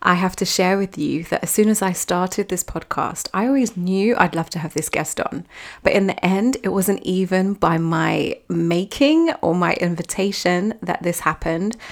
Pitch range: 170-200 Hz